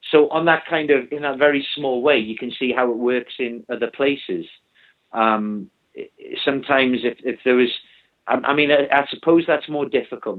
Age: 40-59